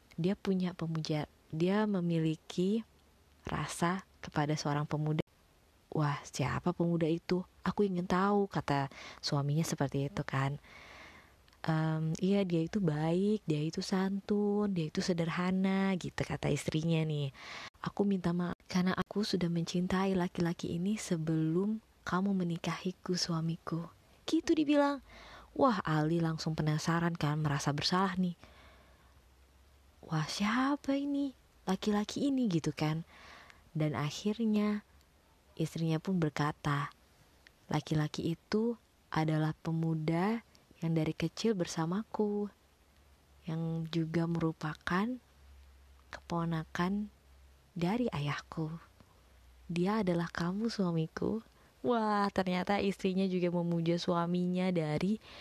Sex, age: female, 20-39